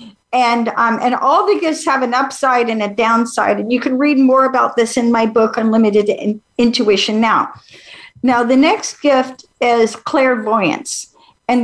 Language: English